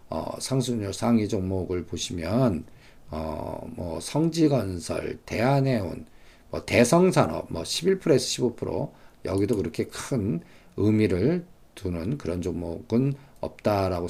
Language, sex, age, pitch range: Korean, male, 50-69, 95-150 Hz